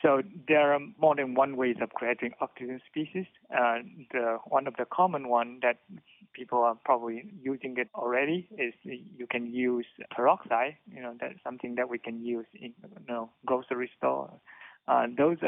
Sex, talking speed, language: male, 180 wpm, English